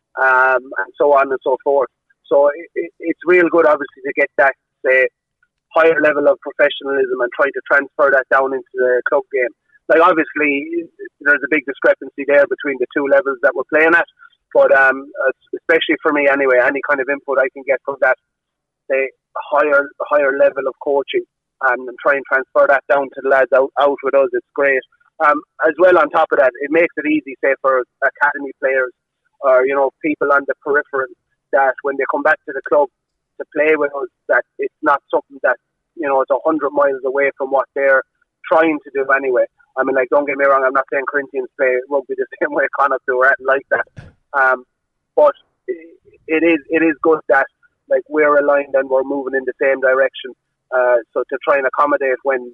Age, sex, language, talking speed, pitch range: 30-49, male, English, 210 wpm, 135-175 Hz